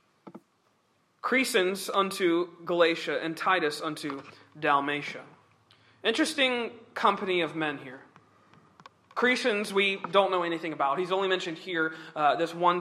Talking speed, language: 115 wpm, English